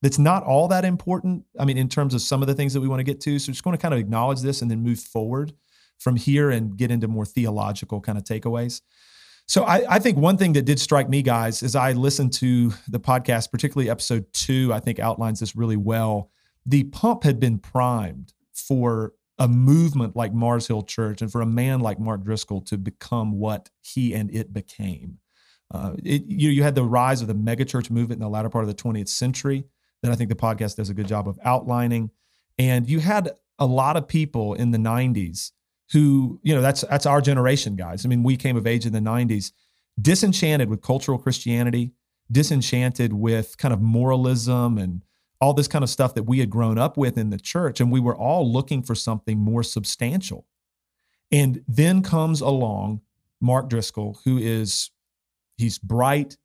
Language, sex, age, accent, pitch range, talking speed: English, male, 40-59, American, 110-140 Hz, 205 wpm